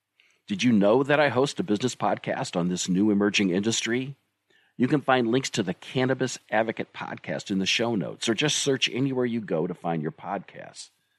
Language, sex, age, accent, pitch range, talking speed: English, male, 50-69, American, 100-130 Hz, 200 wpm